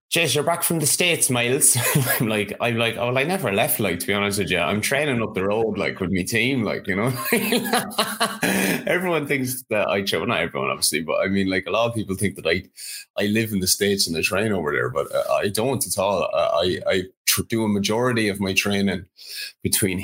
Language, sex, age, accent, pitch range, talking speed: English, male, 20-39, Irish, 95-110 Hz, 235 wpm